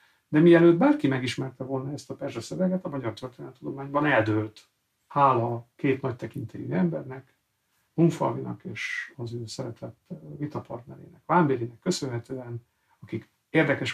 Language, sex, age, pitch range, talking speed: Hungarian, male, 60-79, 120-165 Hz, 125 wpm